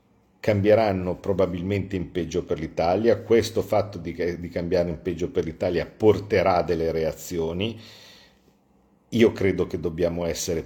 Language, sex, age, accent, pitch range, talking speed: Italian, male, 50-69, native, 85-100 Hz, 130 wpm